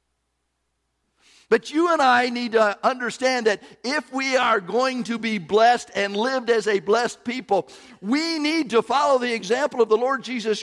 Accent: American